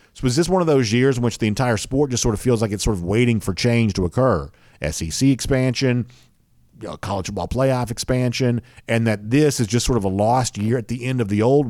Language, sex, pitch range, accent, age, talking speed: English, male, 100-125 Hz, American, 50-69, 240 wpm